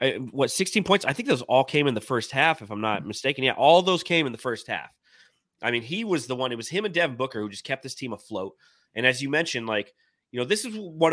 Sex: male